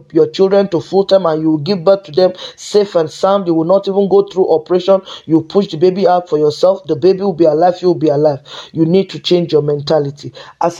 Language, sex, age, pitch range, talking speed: English, male, 20-39, 155-190 Hz, 235 wpm